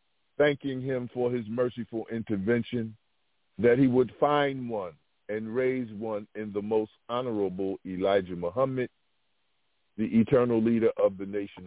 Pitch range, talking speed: 105-130 Hz, 135 wpm